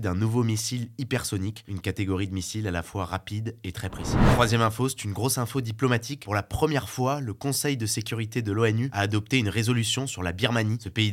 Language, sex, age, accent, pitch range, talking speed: French, male, 20-39, French, 100-120 Hz, 220 wpm